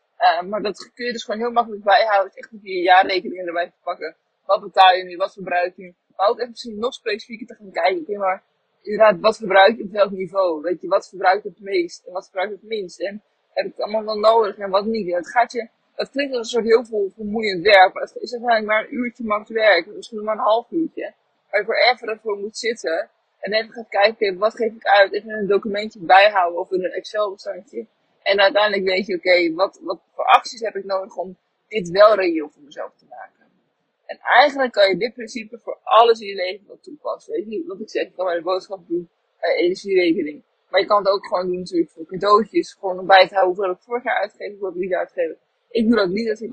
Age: 20-39